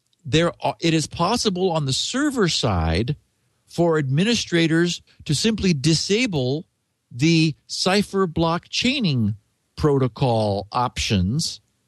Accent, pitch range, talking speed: American, 120-170 Hz, 100 wpm